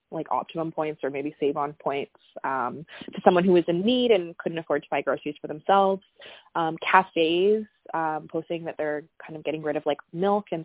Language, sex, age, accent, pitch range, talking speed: English, female, 20-39, American, 150-185 Hz, 210 wpm